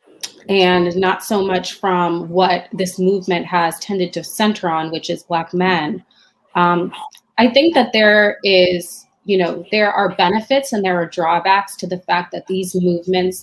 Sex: female